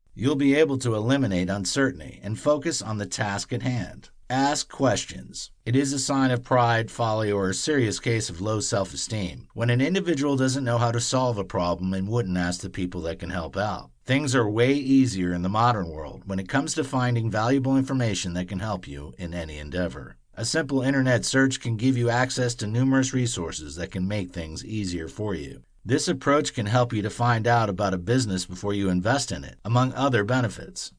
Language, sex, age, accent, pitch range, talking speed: English, male, 50-69, American, 95-130 Hz, 205 wpm